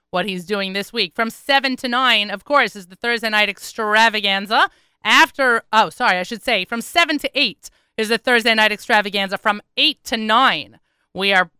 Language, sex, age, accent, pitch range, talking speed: English, female, 30-49, American, 205-255 Hz, 190 wpm